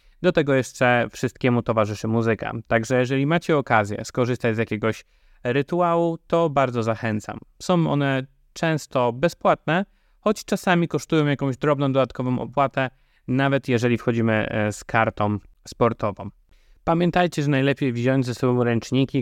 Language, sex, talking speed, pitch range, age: Polish, male, 130 wpm, 105-130 Hz, 20-39